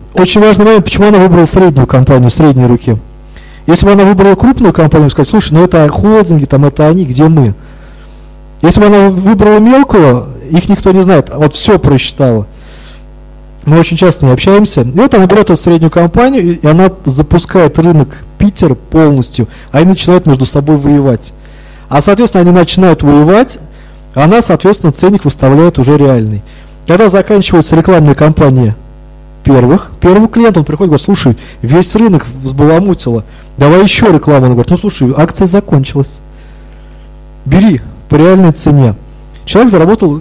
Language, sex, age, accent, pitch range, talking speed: Russian, male, 20-39, native, 135-185 Hz, 155 wpm